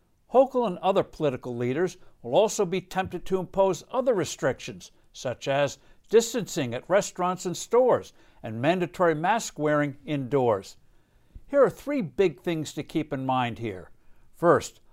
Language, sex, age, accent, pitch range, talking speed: English, male, 60-79, American, 140-190 Hz, 140 wpm